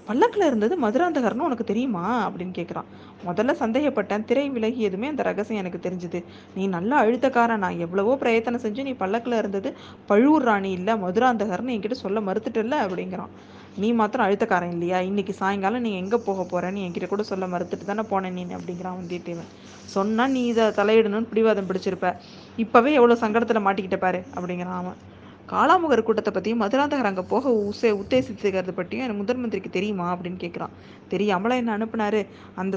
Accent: native